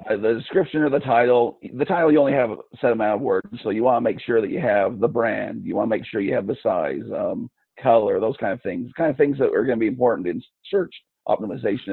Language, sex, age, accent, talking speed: English, male, 50-69, American, 265 wpm